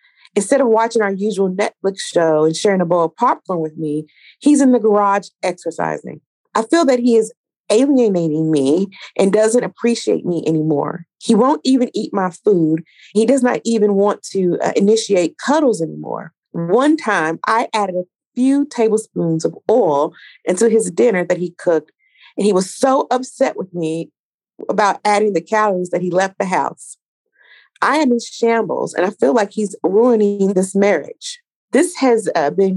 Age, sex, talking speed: 40-59, female, 175 wpm